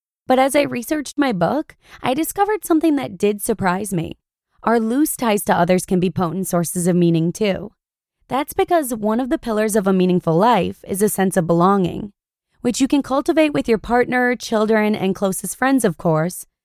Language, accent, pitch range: English, American, 185-255 Hz